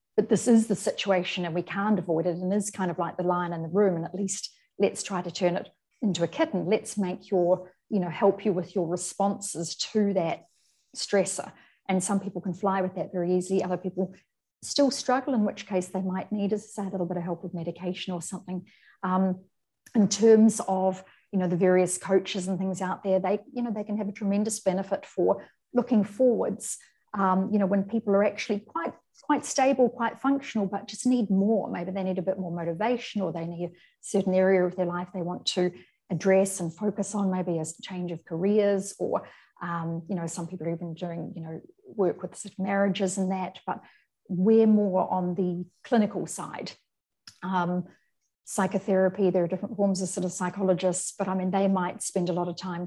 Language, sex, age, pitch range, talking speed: English, female, 40-59, 180-205 Hz, 210 wpm